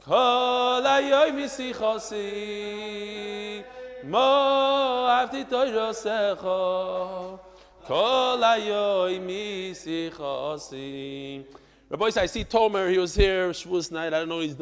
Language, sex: English, male